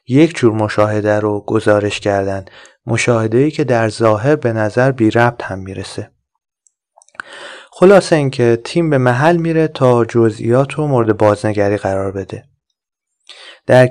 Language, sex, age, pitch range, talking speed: Persian, male, 30-49, 110-140 Hz, 135 wpm